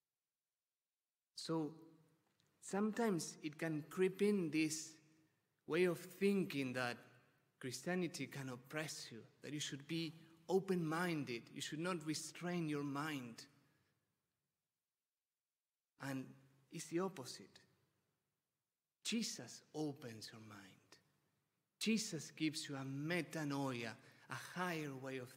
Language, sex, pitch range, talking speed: English, male, 135-170 Hz, 100 wpm